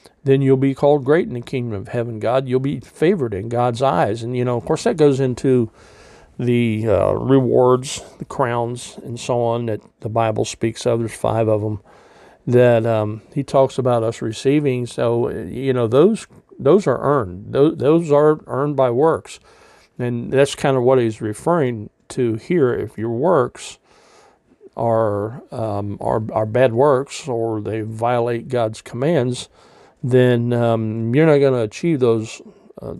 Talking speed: 170 wpm